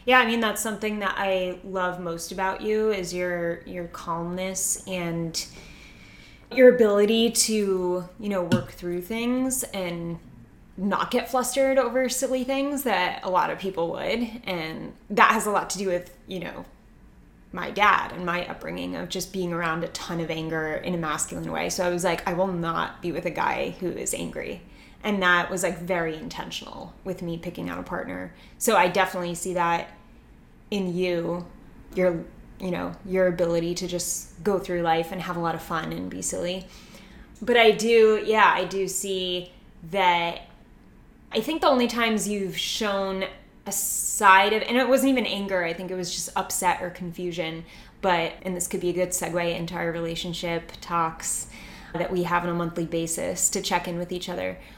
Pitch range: 170-200 Hz